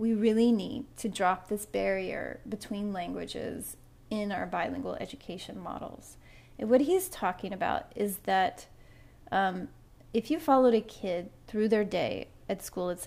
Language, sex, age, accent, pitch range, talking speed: English, female, 30-49, American, 200-230 Hz, 150 wpm